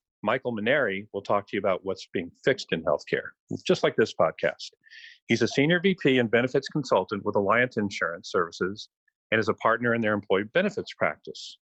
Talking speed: 185 wpm